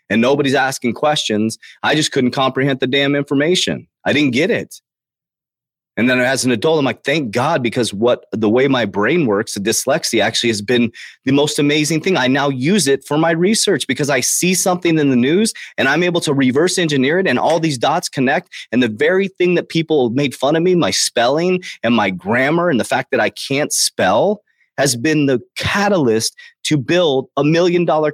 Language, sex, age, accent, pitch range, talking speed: English, male, 30-49, American, 135-175 Hz, 205 wpm